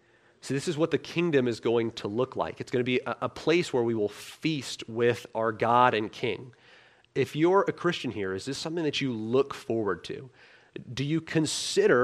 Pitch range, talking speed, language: 115-145 Hz, 210 wpm, English